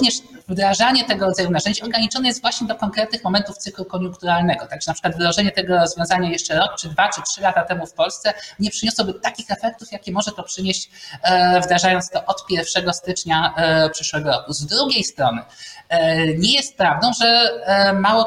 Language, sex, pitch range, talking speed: Polish, male, 170-225 Hz, 170 wpm